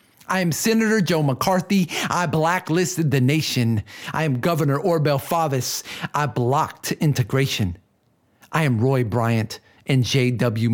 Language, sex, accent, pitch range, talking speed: English, male, American, 115-150 Hz, 130 wpm